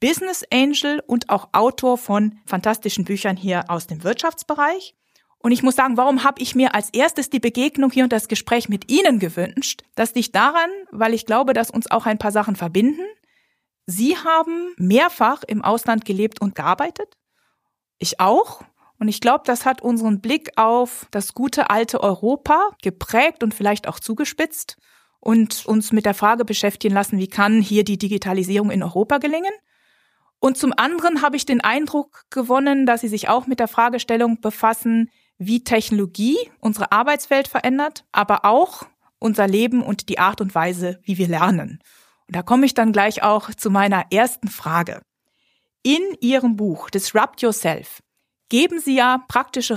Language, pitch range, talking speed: German, 205-265 Hz, 170 wpm